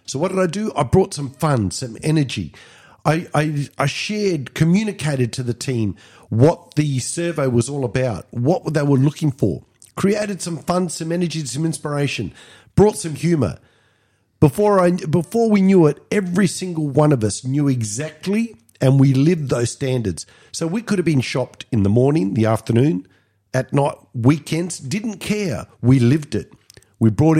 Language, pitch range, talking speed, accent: English, 110-150 Hz, 170 wpm, Australian